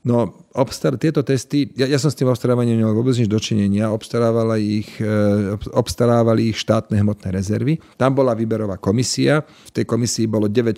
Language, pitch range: Slovak, 105-125 Hz